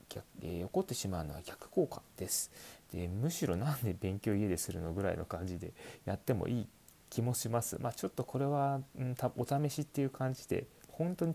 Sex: male